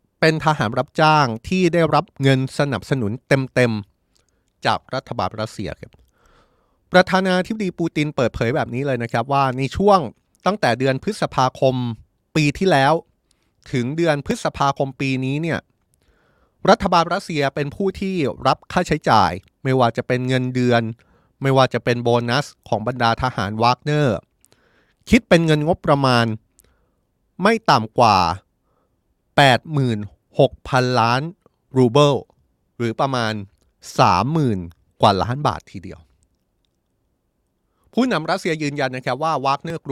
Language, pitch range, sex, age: Thai, 105-150 Hz, male, 20-39